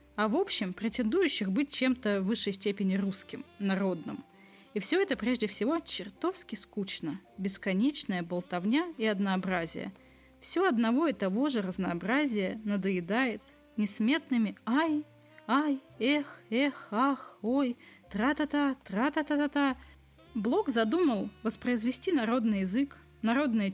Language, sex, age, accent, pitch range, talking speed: Russian, female, 20-39, native, 195-265 Hz, 110 wpm